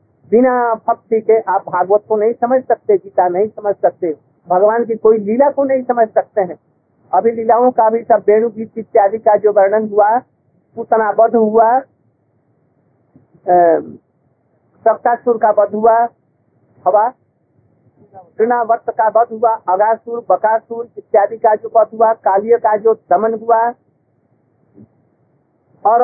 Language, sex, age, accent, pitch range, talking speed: Hindi, male, 50-69, native, 205-240 Hz, 135 wpm